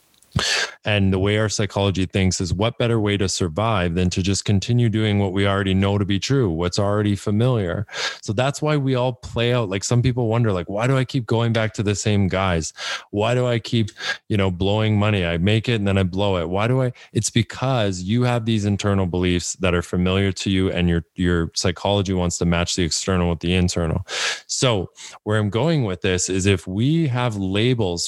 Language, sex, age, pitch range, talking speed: English, male, 20-39, 90-115 Hz, 220 wpm